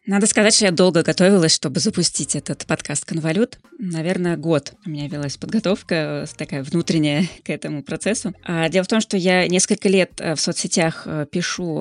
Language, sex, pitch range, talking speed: Russian, female, 165-200 Hz, 165 wpm